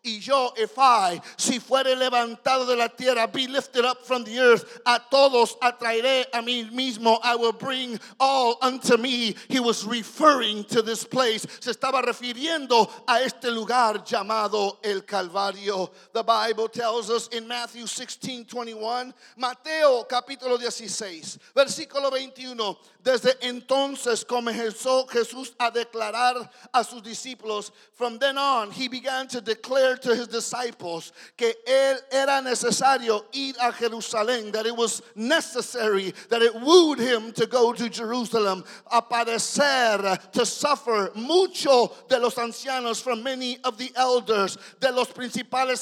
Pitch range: 225-255 Hz